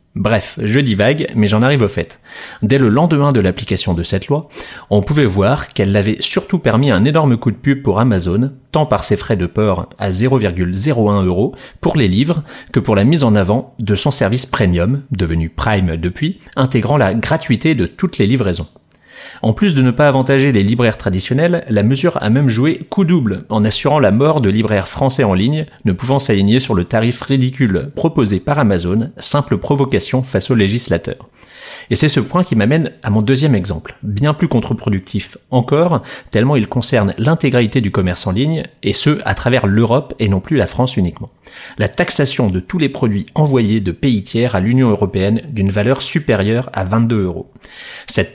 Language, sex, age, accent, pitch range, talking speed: French, male, 30-49, French, 100-140 Hz, 195 wpm